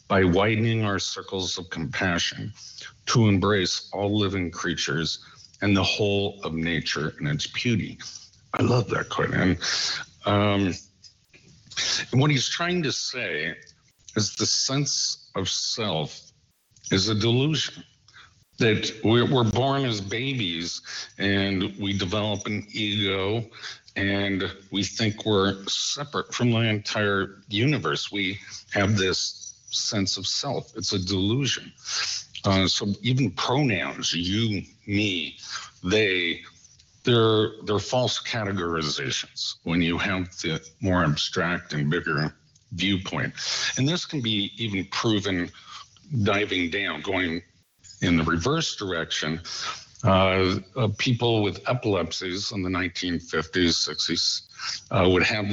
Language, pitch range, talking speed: English, 95-115 Hz, 120 wpm